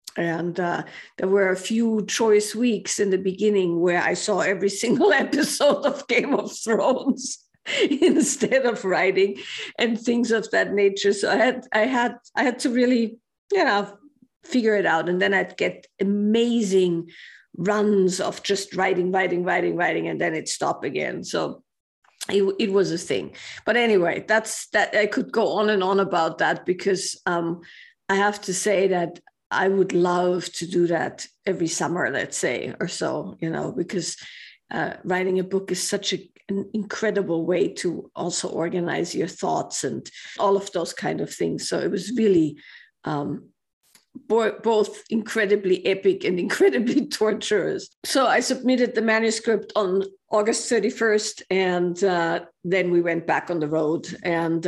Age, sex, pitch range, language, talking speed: 50-69, female, 180-230 Hz, English, 165 wpm